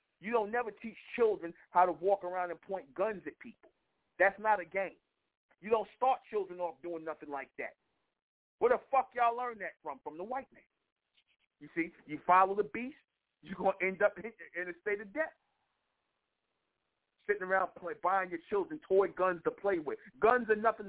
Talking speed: 195 wpm